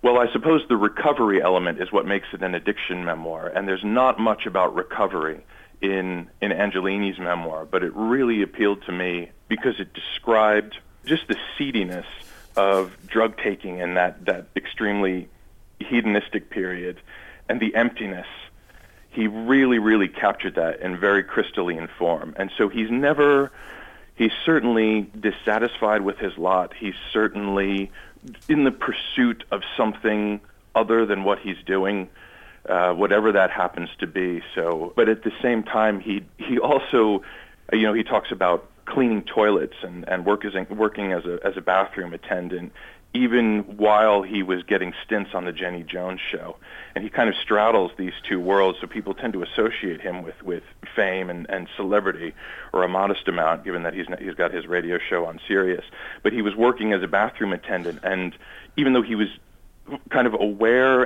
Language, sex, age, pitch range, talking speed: English, male, 40-59, 90-110 Hz, 170 wpm